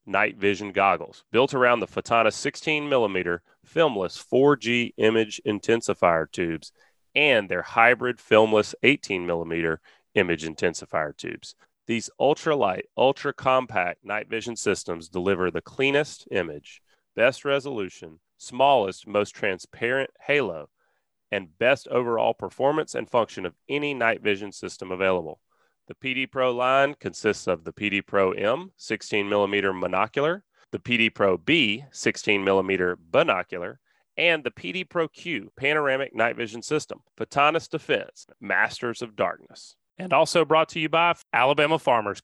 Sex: male